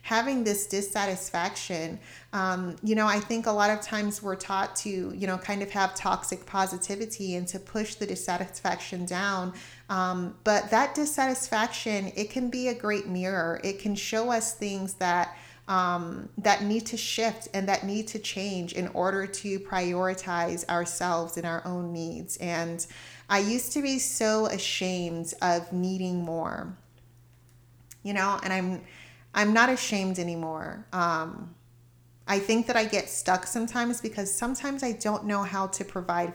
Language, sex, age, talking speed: English, female, 30-49, 160 wpm